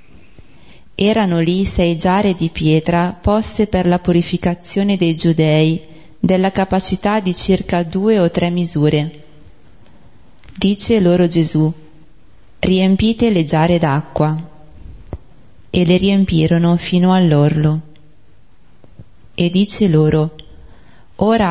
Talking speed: 100 wpm